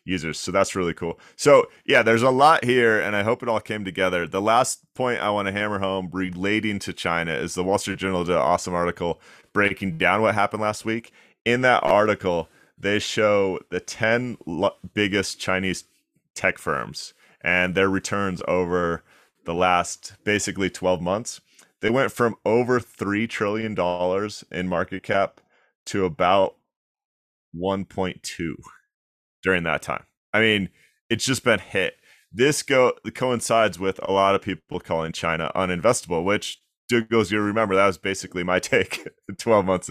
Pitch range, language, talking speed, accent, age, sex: 90-110 Hz, English, 160 wpm, American, 30-49, male